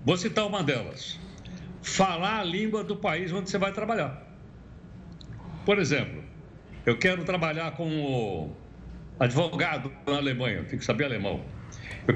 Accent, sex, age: Brazilian, male, 60-79